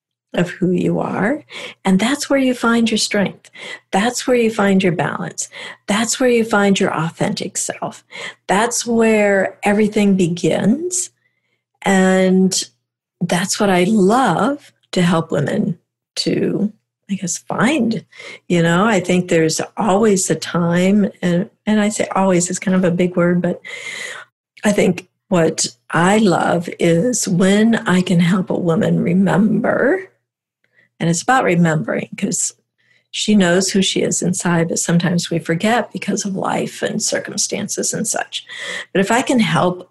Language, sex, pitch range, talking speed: English, female, 175-215 Hz, 150 wpm